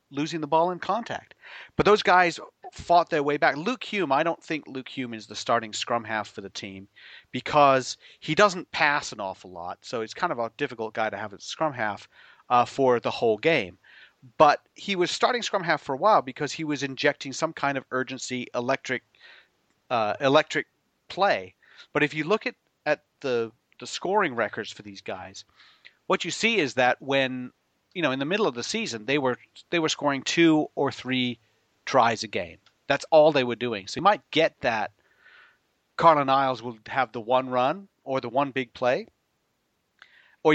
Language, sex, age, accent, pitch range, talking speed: English, male, 40-59, American, 125-165 Hz, 195 wpm